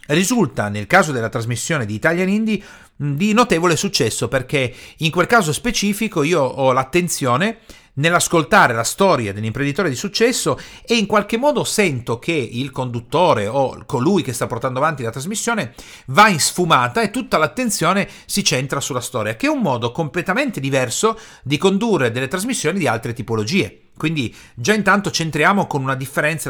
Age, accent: 40-59, native